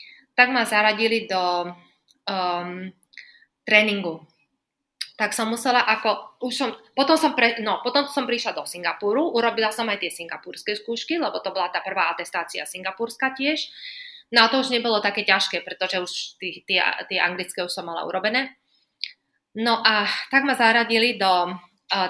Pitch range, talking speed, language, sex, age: 185-235 Hz, 125 wpm, Slovak, female, 20-39